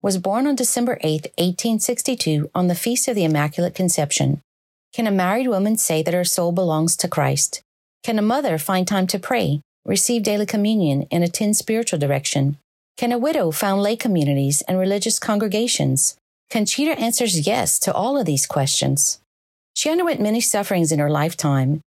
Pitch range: 155-220 Hz